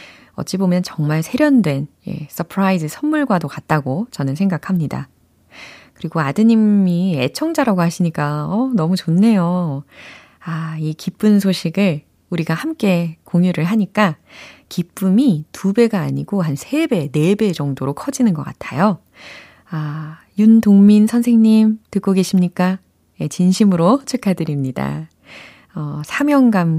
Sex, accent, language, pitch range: female, native, Korean, 150-220 Hz